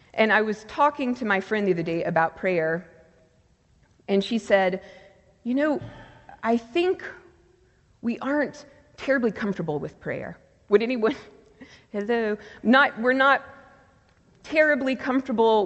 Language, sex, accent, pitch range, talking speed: English, female, American, 185-245 Hz, 125 wpm